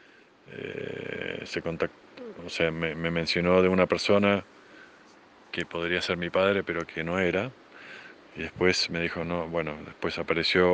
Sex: male